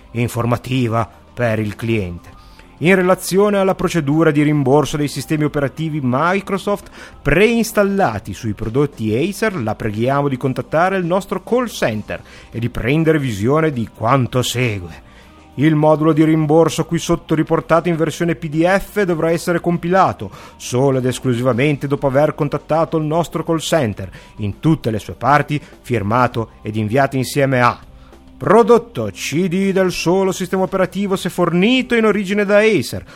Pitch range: 120-170 Hz